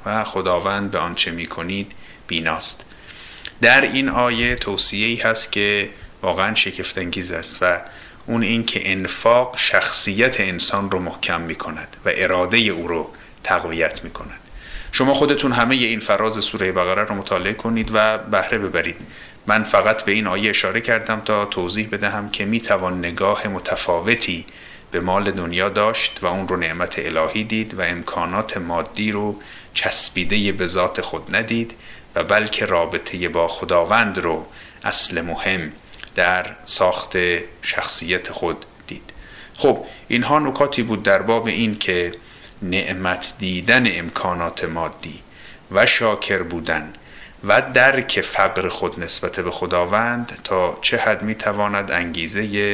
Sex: male